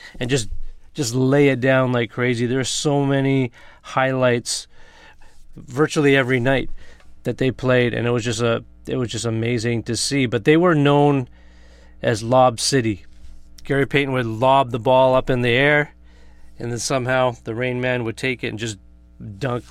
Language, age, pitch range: English, 30-49, 110-140 Hz